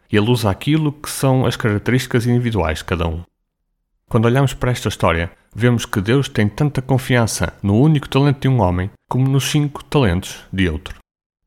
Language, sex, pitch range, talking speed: Portuguese, male, 90-125 Hz, 180 wpm